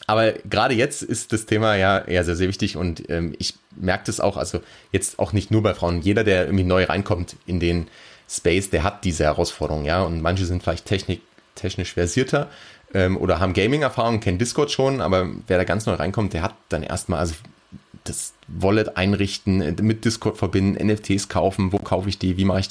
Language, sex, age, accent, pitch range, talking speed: German, male, 30-49, German, 90-105 Hz, 205 wpm